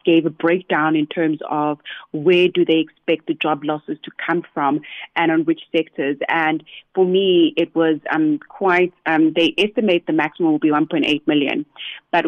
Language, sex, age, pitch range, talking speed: English, female, 30-49, 155-190 Hz, 180 wpm